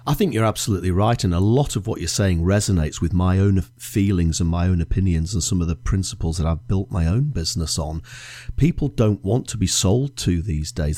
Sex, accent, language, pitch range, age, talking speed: male, British, English, 90-120 Hz, 40-59, 230 wpm